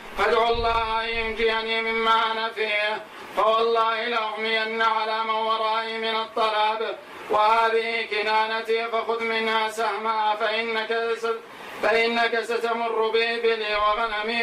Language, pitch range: Arabic, 220-230 Hz